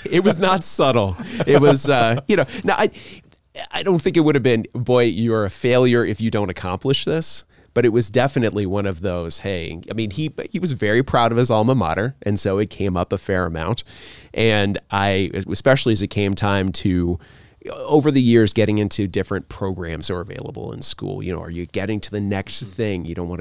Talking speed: 220 wpm